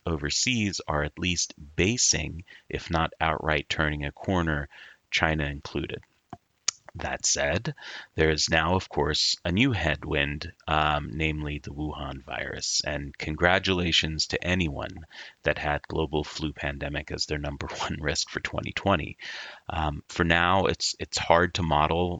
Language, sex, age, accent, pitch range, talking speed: English, male, 30-49, American, 75-85 Hz, 140 wpm